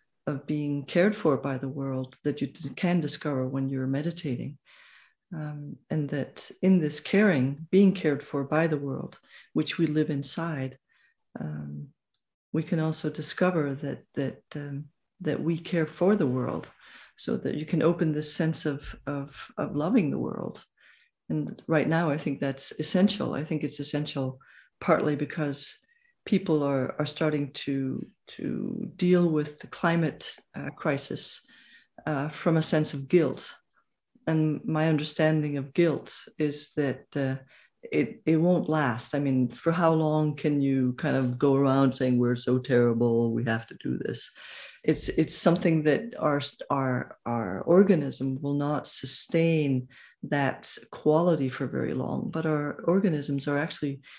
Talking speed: 155 wpm